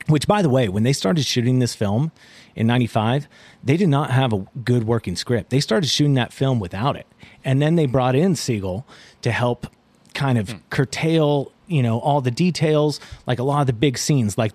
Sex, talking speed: male, 210 wpm